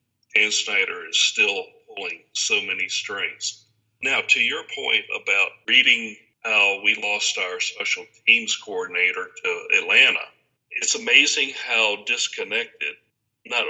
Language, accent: English, American